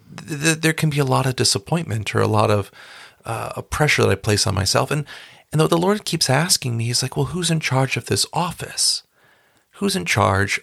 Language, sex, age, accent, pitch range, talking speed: English, male, 40-59, American, 110-145 Hz, 220 wpm